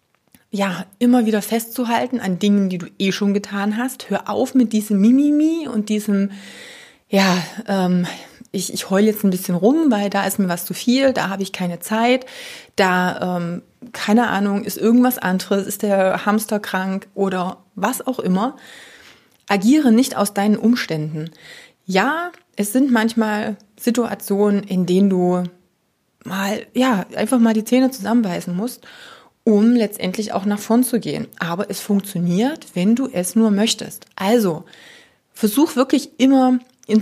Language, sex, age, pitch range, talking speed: German, female, 30-49, 185-235 Hz, 155 wpm